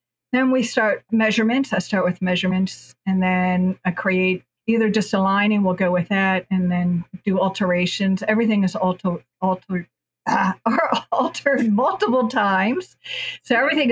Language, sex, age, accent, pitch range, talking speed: English, female, 50-69, American, 185-225 Hz, 135 wpm